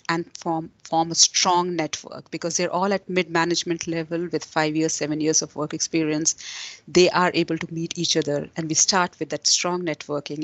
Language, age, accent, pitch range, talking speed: English, 30-49, Indian, 165-200 Hz, 200 wpm